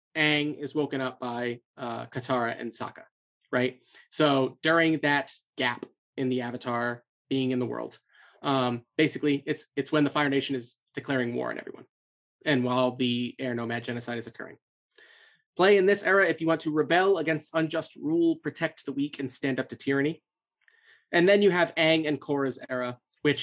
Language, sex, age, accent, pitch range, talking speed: English, male, 30-49, American, 130-160 Hz, 180 wpm